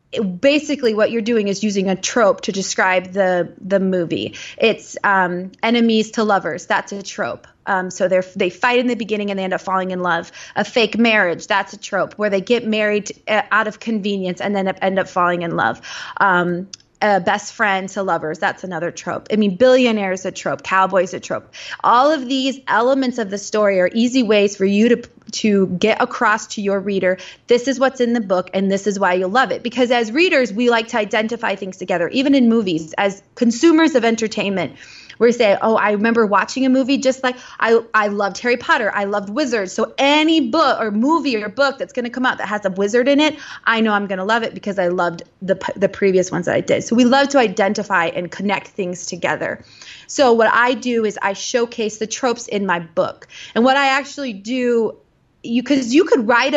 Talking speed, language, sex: 215 wpm, English, female